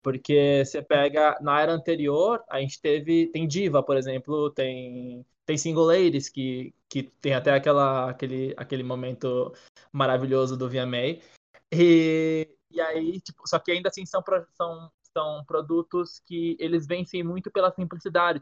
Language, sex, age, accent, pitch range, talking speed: Portuguese, male, 20-39, Brazilian, 135-165 Hz, 150 wpm